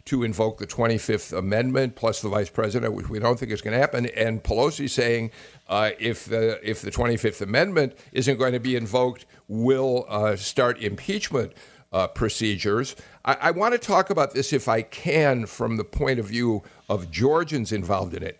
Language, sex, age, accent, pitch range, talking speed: English, male, 50-69, American, 110-140 Hz, 190 wpm